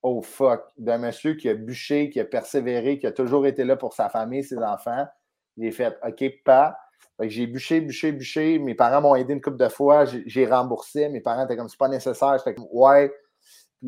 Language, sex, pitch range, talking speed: French, male, 110-135 Hz, 235 wpm